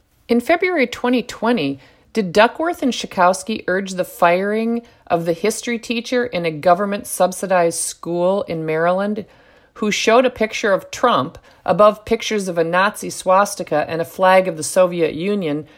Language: English